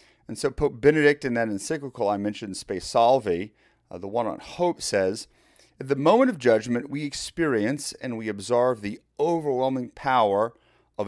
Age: 30-49